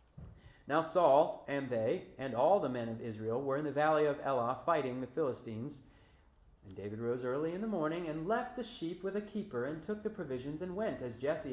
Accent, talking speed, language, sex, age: American, 215 wpm, English, male, 30-49